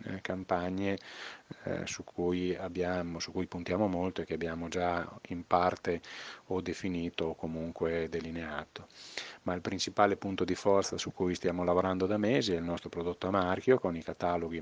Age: 30-49